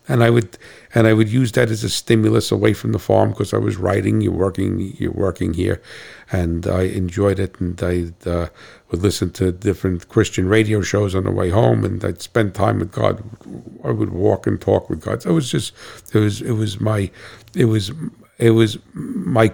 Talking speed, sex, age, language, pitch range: 210 wpm, male, 50-69, English, 95-115 Hz